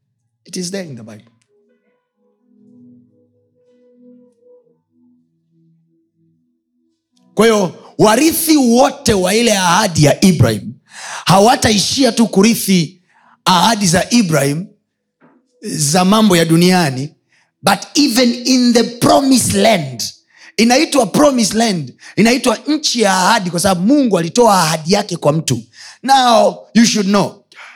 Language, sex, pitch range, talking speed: Swahili, male, 150-230 Hz, 105 wpm